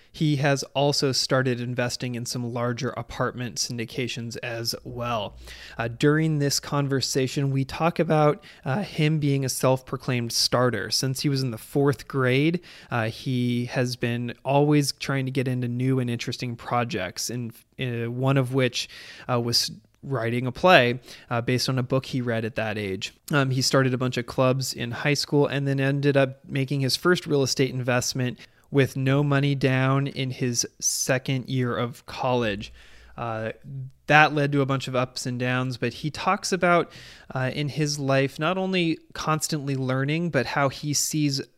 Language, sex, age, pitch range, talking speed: English, male, 20-39, 120-145 Hz, 175 wpm